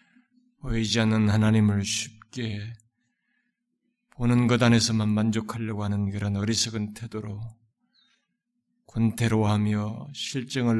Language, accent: Korean, native